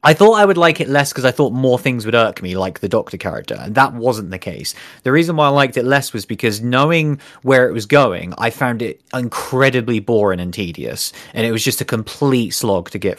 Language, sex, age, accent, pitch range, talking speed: English, male, 30-49, British, 105-130 Hz, 245 wpm